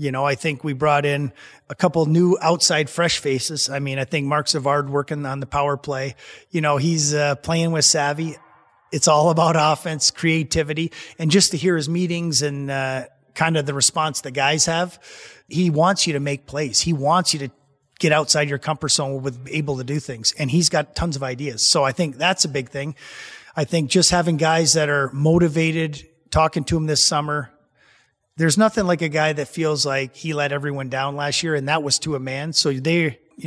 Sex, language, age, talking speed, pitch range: male, English, 30-49, 215 wpm, 140-165 Hz